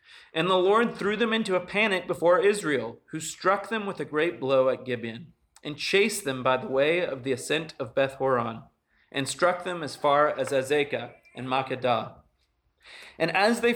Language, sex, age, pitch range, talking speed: English, male, 40-59, 130-180 Hz, 185 wpm